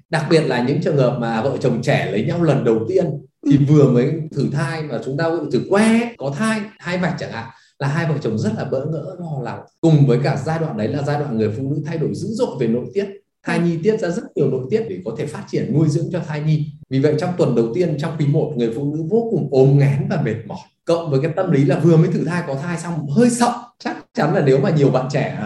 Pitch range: 145-185 Hz